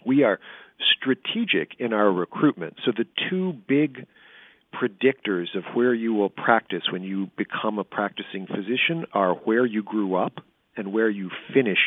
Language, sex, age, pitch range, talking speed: English, male, 50-69, 95-115 Hz, 155 wpm